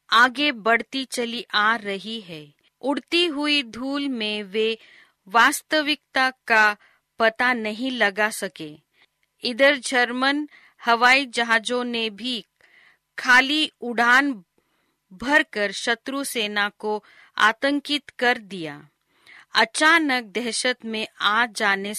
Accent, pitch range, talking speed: native, 215-270 Hz, 105 wpm